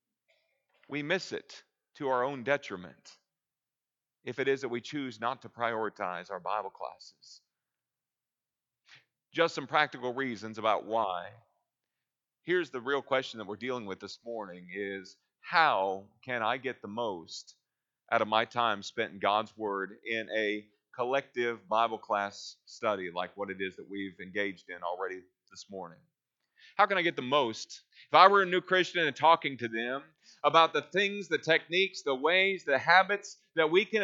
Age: 40-59